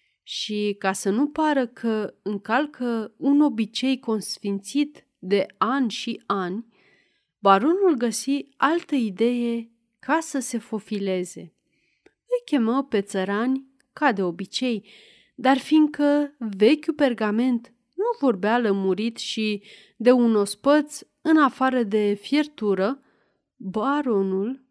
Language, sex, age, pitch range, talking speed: Romanian, female, 30-49, 205-275 Hz, 110 wpm